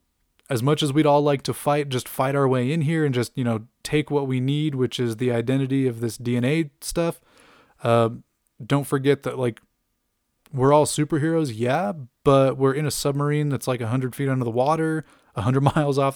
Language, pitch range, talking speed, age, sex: English, 120-145 Hz, 210 wpm, 20-39, male